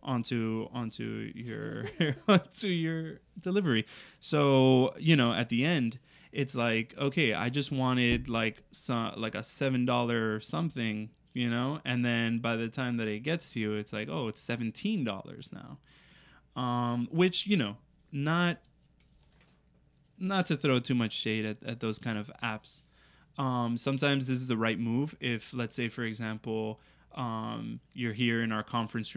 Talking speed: 165 wpm